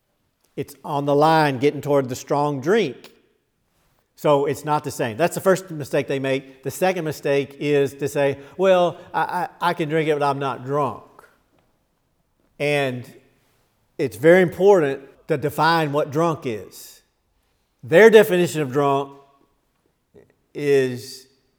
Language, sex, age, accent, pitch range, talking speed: English, male, 50-69, American, 135-175 Hz, 140 wpm